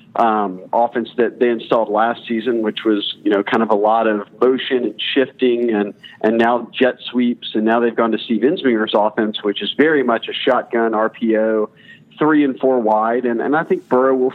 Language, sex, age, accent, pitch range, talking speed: English, male, 40-59, American, 110-130 Hz, 205 wpm